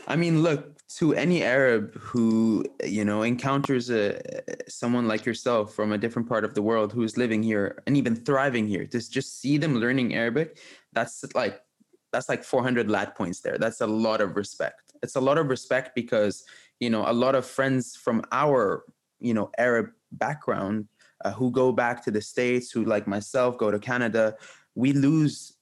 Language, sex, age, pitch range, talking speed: English, male, 20-39, 110-135 Hz, 190 wpm